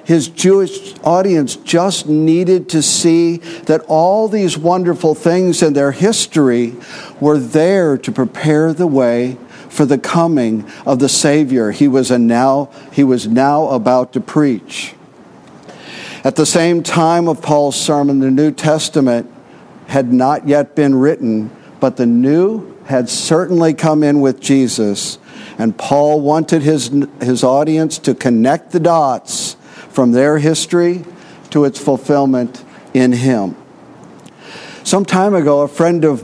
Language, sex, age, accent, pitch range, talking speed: English, male, 50-69, American, 130-165 Hz, 140 wpm